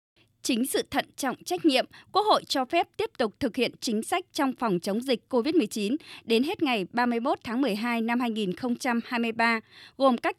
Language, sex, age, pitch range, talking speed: Vietnamese, female, 20-39, 225-280 Hz, 180 wpm